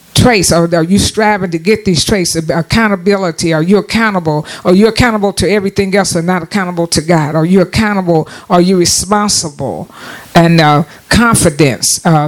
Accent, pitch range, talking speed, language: American, 170-205 Hz, 165 wpm, English